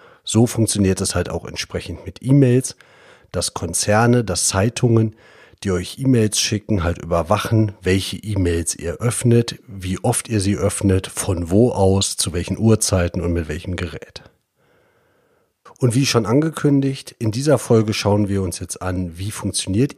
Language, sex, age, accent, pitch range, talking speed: German, male, 40-59, German, 95-125 Hz, 155 wpm